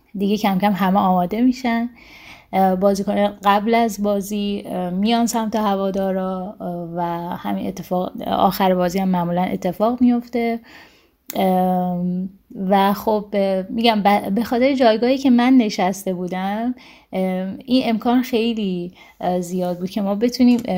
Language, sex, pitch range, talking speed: Persian, female, 190-240 Hz, 115 wpm